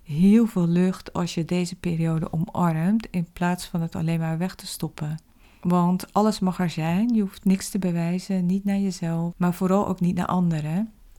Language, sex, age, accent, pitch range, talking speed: Dutch, female, 40-59, Dutch, 165-190 Hz, 195 wpm